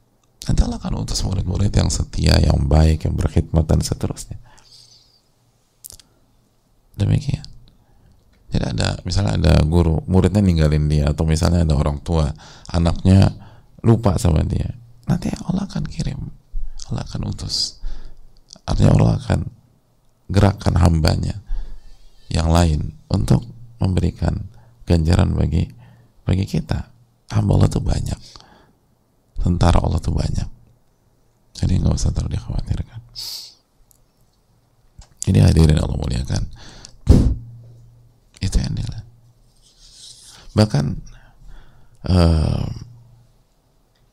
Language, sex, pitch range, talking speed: English, male, 90-125 Hz, 100 wpm